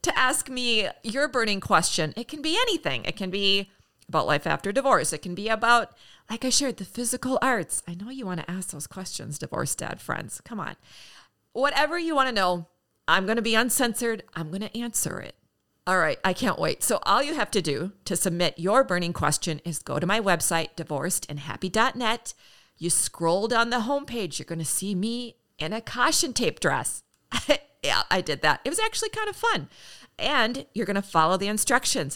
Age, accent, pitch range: 40-59, American, 175-245 Hz